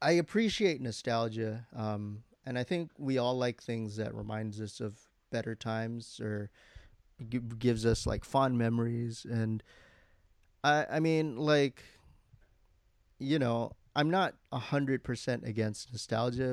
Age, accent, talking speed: 20-39, American, 135 wpm